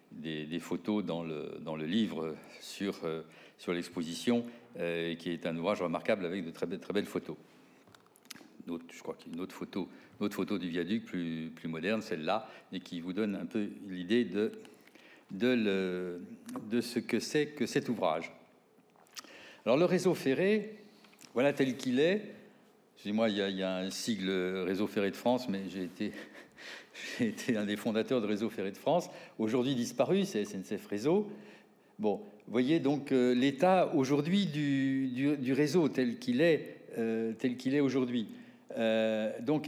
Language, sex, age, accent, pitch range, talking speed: French, male, 60-79, French, 105-150 Hz, 175 wpm